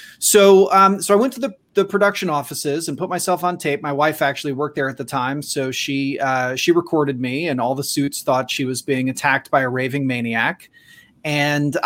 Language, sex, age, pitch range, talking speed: English, male, 30-49, 135-170 Hz, 220 wpm